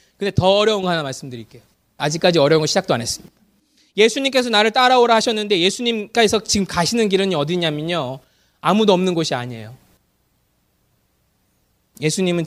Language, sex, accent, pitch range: Korean, male, native, 125-200 Hz